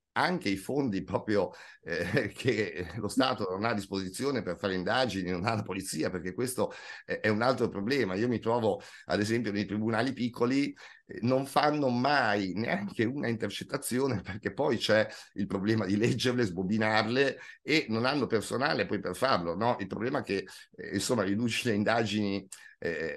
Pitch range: 95-115 Hz